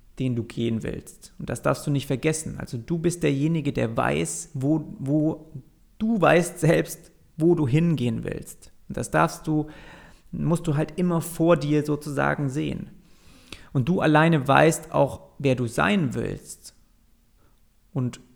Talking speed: 155 wpm